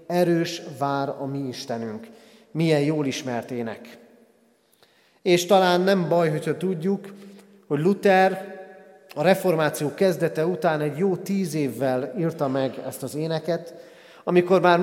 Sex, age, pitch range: male, 40-59, 135-170 Hz